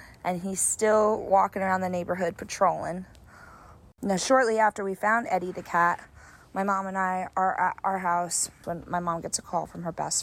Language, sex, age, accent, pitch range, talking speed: English, female, 20-39, American, 165-190 Hz, 195 wpm